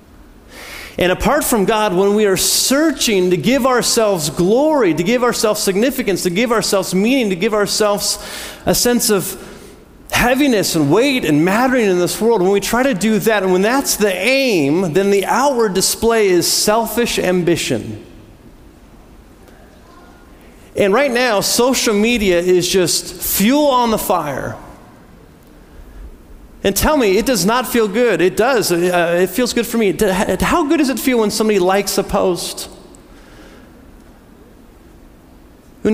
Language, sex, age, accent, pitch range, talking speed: English, male, 40-59, American, 180-225 Hz, 150 wpm